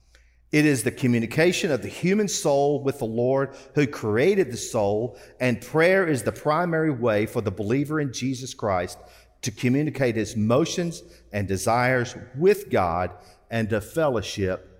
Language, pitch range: English, 80-130 Hz